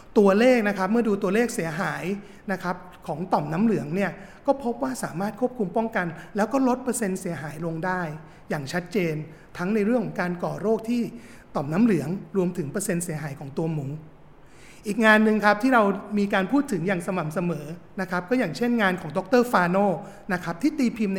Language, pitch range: Thai, 170-210 Hz